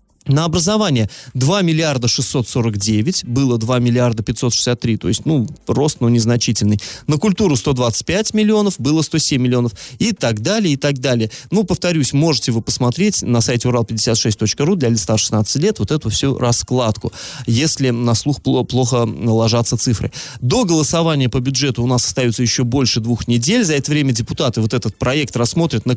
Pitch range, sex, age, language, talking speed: 115-150 Hz, male, 20-39, Russian, 165 wpm